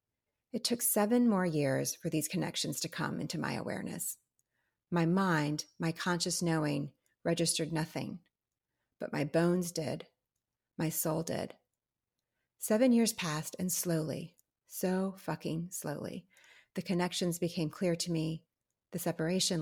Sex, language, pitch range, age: female, English, 150-185 Hz, 30-49